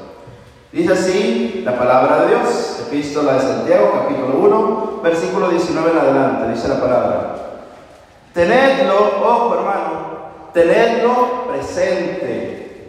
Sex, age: male, 40-59